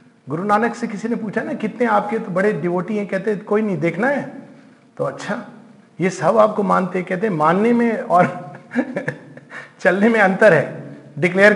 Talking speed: 170 wpm